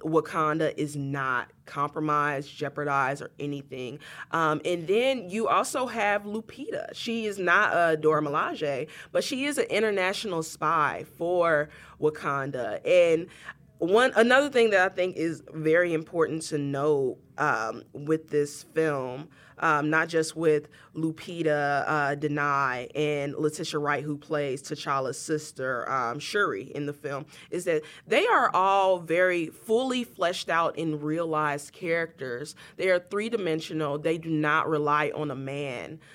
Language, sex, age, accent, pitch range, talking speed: English, female, 20-39, American, 145-175 Hz, 140 wpm